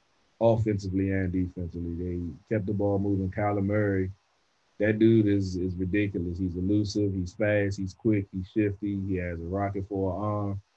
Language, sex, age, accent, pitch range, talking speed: English, male, 20-39, American, 95-105 Hz, 165 wpm